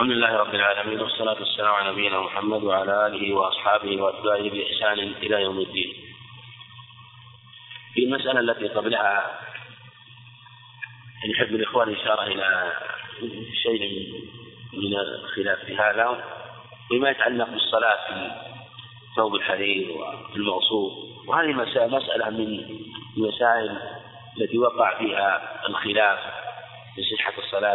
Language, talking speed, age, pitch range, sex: Arabic, 105 wpm, 30-49, 105-120 Hz, male